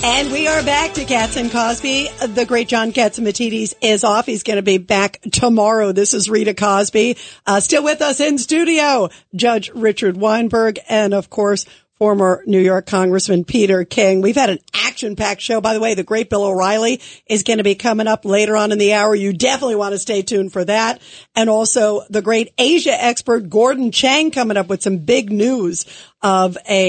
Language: English